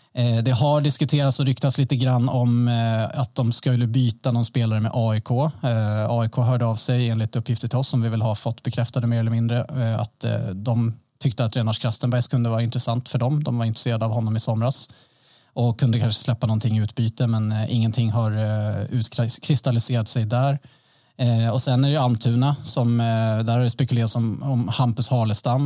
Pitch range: 115-135 Hz